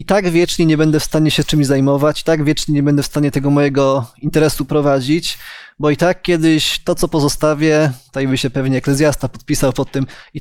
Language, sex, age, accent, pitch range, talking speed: Polish, male, 20-39, native, 140-170 Hz, 210 wpm